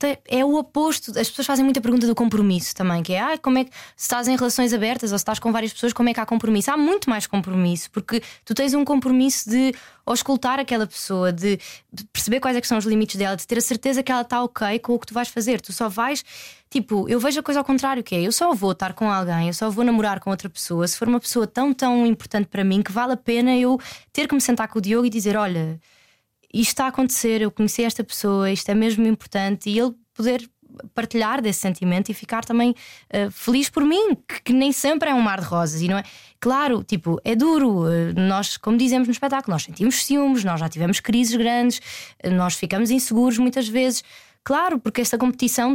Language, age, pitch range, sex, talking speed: Portuguese, 20-39, 205-255 Hz, female, 240 wpm